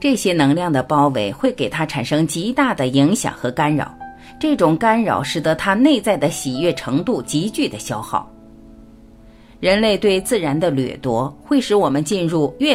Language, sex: Chinese, female